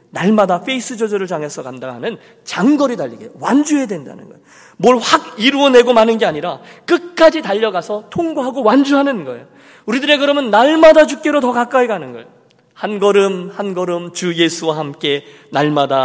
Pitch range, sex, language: 140-225 Hz, male, Korean